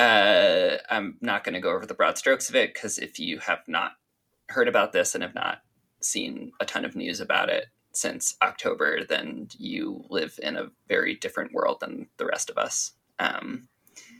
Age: 20-39